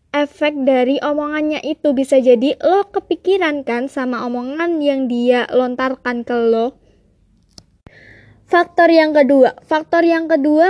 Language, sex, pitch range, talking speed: Indonesian, female, 260-315 Hz, 125 wpm